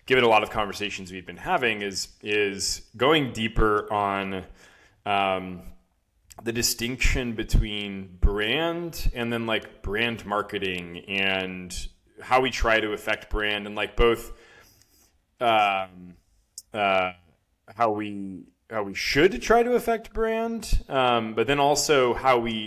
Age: 20-39